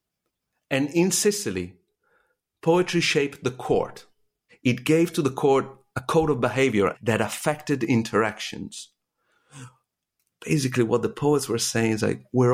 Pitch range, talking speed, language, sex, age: 115-145 Hz, 135 wpm, English, male, 50-69